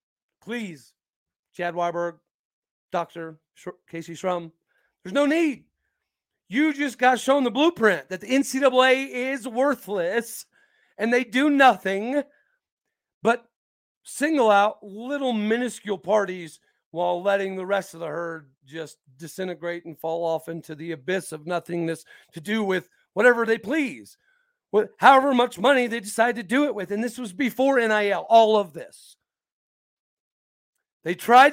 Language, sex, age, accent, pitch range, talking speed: English, male, 40-59, American, 175-245 Hz, 135 wpm